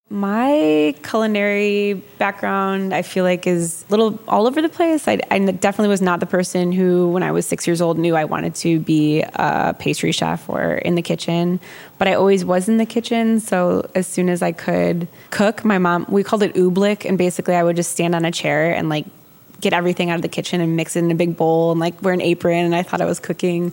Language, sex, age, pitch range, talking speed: English, female, 20-39, 160-190 Hz, 240 wpm